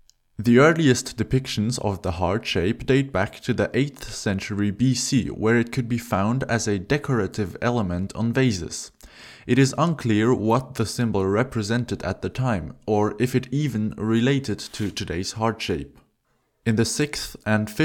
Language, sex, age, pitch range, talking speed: English, male, 20-39, 100-125 Hz, 160 wpm